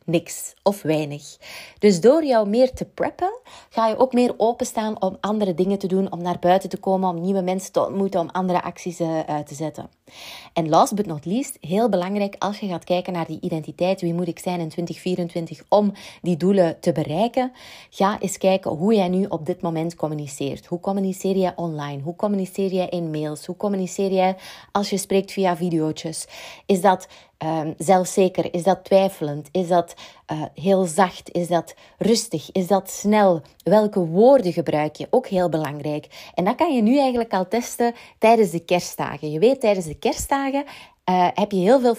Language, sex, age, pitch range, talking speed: Dutch, female, 30-49, 175-220 Hz, 190 wpm